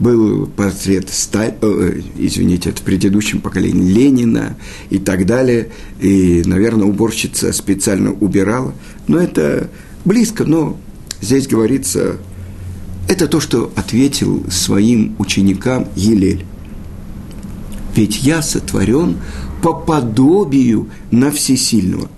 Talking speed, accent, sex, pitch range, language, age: 95 wpm, native, male, 100-150 Hz, Russian, 50-69